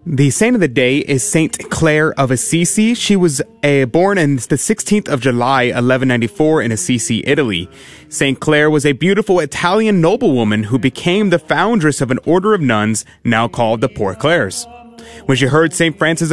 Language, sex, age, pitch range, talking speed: English, male, 30-49, 130-175 Hz, 180 wpm